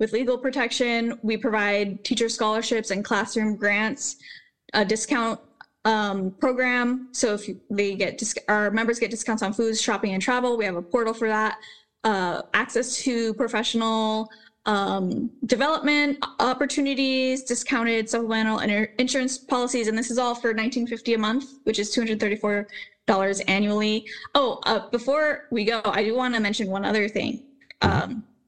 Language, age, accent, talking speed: English, 10-29, American, 150 wpm